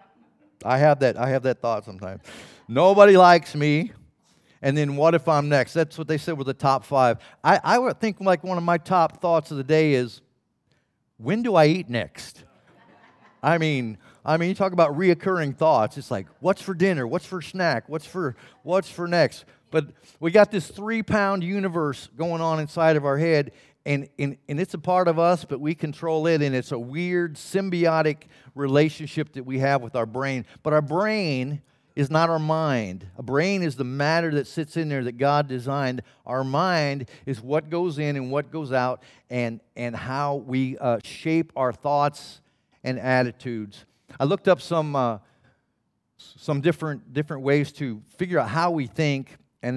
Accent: American